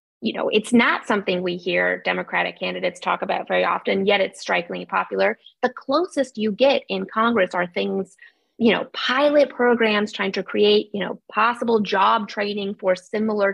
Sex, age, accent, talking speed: female, 20-39, American, 175 wpm